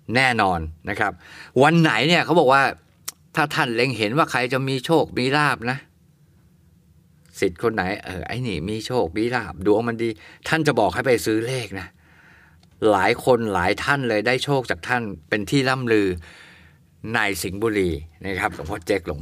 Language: Thai